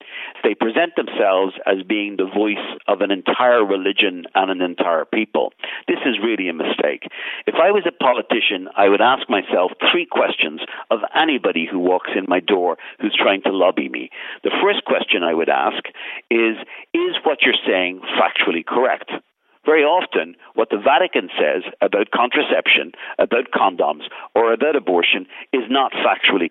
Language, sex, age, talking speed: English, male, 50-69, 165 wpm